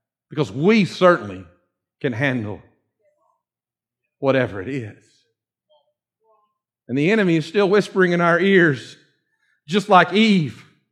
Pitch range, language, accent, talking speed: 150-240 Hz, English, American, 110 wpm